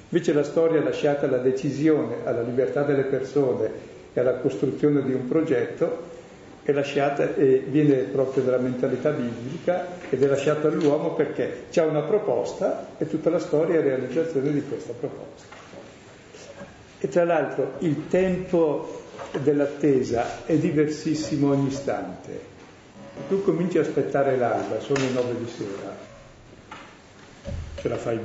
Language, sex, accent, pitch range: Italian, male, native, 135-165 Hz